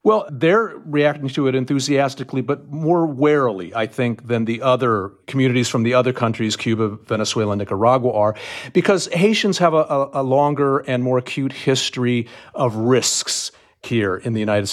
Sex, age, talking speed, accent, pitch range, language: male, 50-69, 165 wpm, American, 115-150 Hz, English